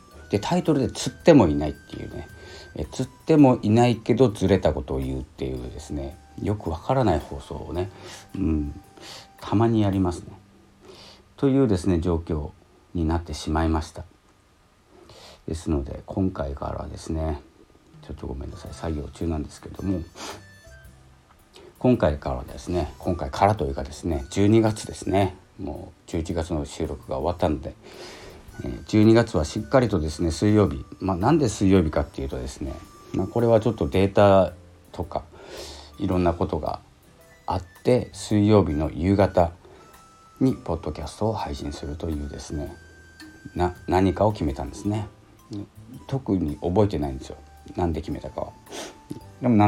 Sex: male